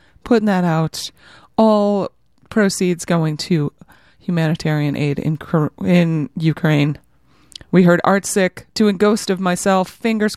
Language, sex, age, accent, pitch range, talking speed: English, female, 30-49, American, 155-205 Hz, 125 wpm